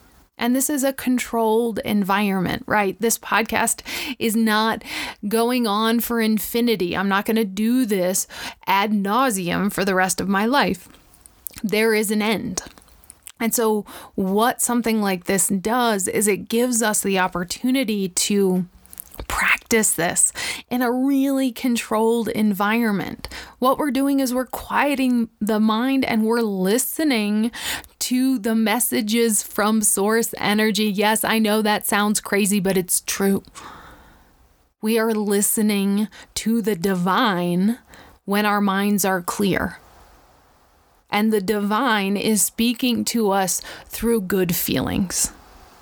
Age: 20-39